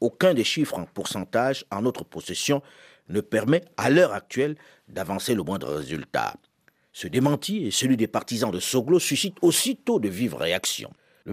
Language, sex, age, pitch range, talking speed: French, male, 50-69, 115-170 Hz, 165 wpm